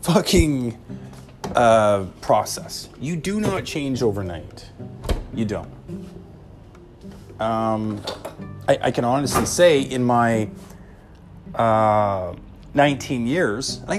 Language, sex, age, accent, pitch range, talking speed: English, male, 30-49, American, 105-165 Hz, 95 wpm